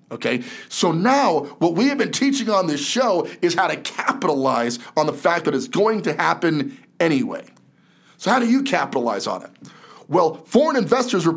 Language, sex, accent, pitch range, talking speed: English, male, American, 145-225 Hz, 185 wpm